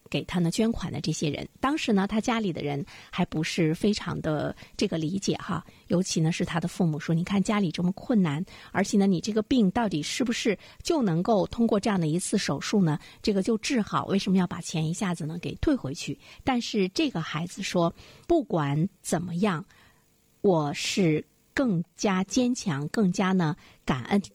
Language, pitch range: Chinese, 165-220 Hz